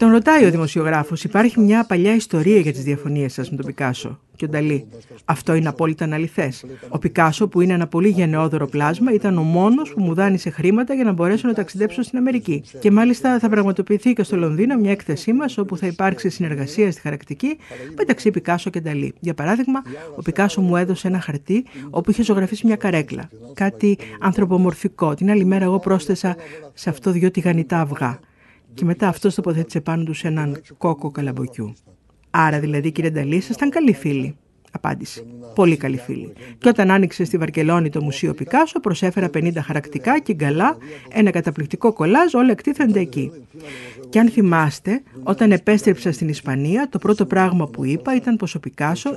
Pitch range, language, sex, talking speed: 150-210 Hz, Greek, female, 175 wpm